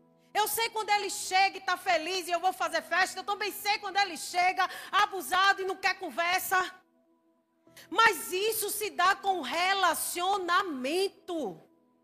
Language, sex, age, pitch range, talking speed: Portuguese, female, 40-59, 270-405 Hz, 150 wpm